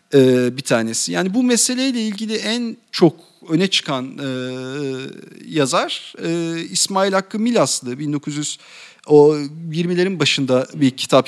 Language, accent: English, Turkish